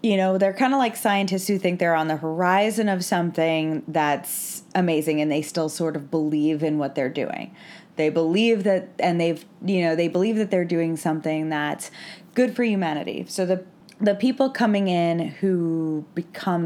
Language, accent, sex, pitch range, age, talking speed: English, American, female, 155-190 Hz, 20-39, 185 wpm